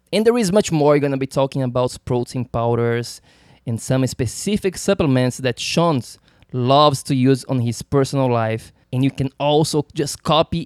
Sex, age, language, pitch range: male, 20-39, English, 130-170 Hz